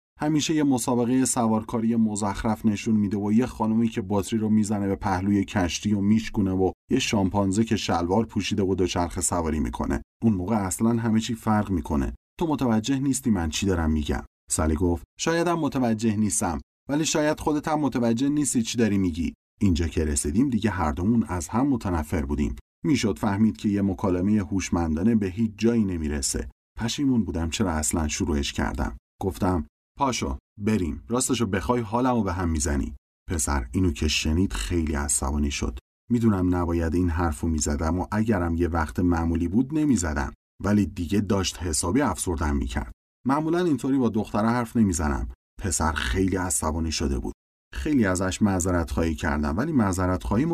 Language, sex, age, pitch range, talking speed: Persian, male, 30-49, 80-115 Hz, 160 wpm